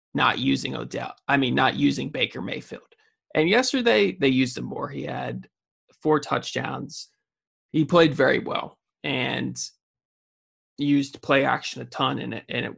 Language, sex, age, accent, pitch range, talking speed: English, male, 20-39, American, 135-180 Hz, 150 wpm